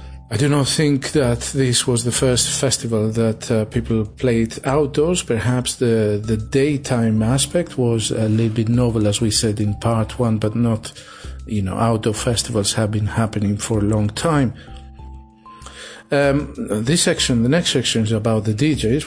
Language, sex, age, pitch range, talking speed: English, male, 40-59, 110-135 Hz, 170 wpm